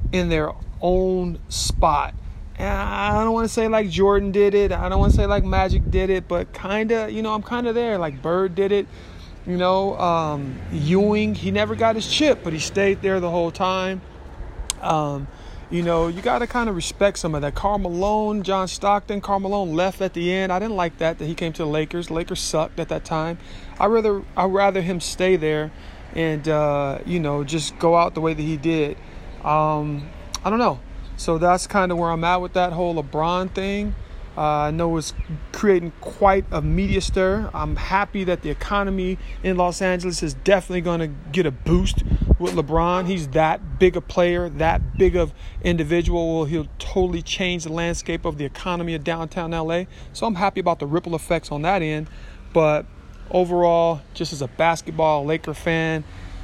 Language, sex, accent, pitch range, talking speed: English, male, American, 155-185 Hz, 200 wpm